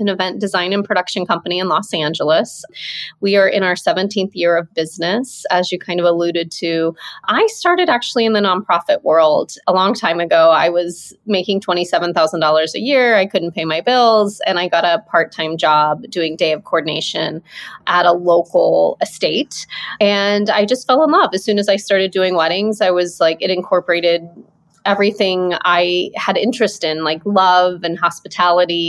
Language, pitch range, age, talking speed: English, 175-215 Hz, 30-49, 180 wpm